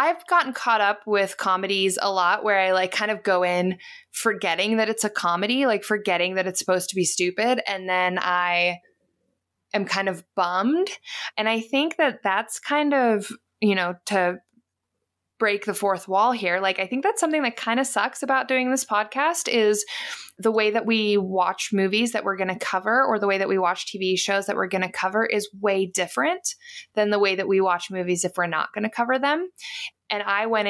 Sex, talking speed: female, 210 wpm